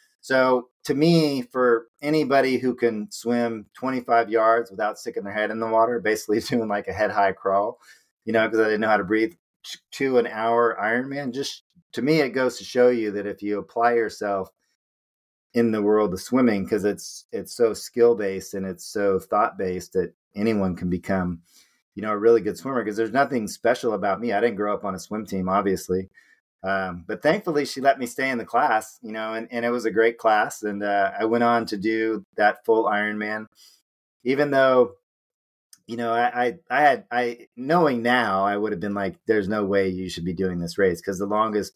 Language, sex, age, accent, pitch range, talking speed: English, male, 40-59, American, 100-120 Hz, 215 wpm